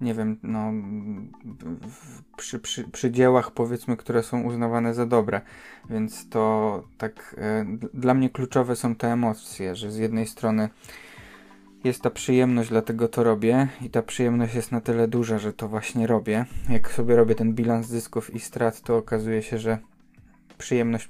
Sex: male